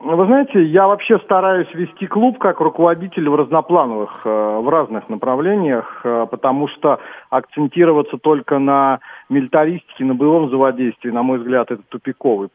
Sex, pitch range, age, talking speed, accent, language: male, 130-165 Hz, 40-59, 135 wpm, native, Russian